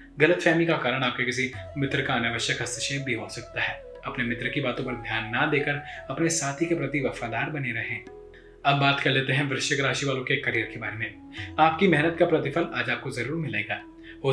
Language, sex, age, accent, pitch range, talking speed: Hindi, male, 20-39, native, 120-155 Hz, 160 wpm